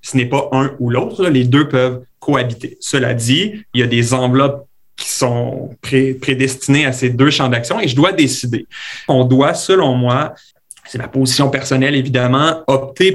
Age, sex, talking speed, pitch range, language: 30-49, male, 185 wpm, 125-140 Hz, French